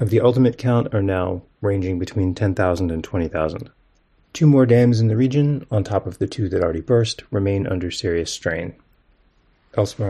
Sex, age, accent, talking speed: male, 30-49, American, 180 wpm